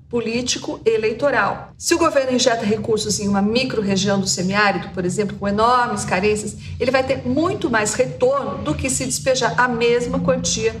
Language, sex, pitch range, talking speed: Portuguese, female, 200-245 Hz, 170 wpm